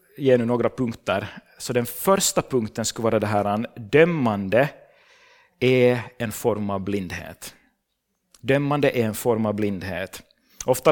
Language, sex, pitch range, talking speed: Swedish, male, 115-140 Hz, 130 wpm